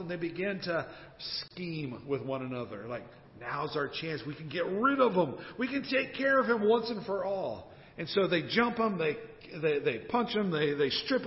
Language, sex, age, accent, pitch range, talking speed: English, male, 50-69, American, 155-225 Hz, 220 wpm